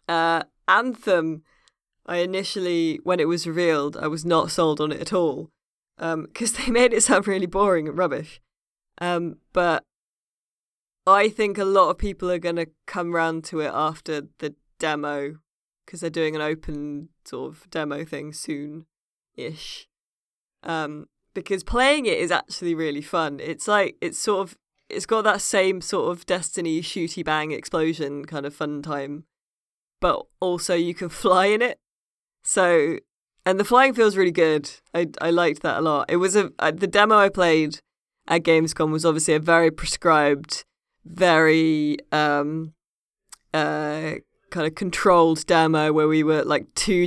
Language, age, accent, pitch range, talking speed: English, 20-39, British, 155-185 Hz, 160 wpm